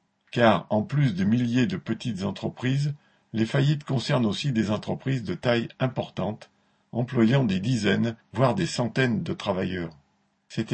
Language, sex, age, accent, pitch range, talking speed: French, male, 50-69, French, 110-130 Hz, 145 wpm